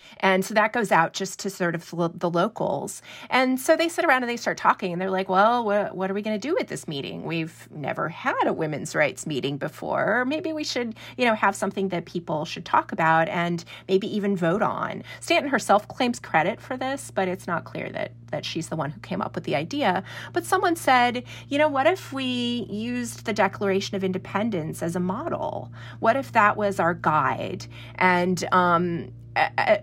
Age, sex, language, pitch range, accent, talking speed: 30-49, female, English, 150-225 Hz, American, 210 wpm